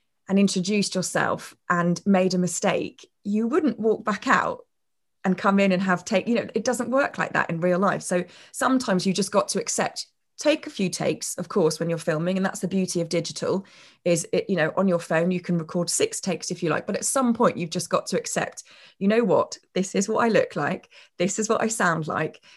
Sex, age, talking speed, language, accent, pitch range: female, 20-39, 235 wpm, English, British, 175-220 Hz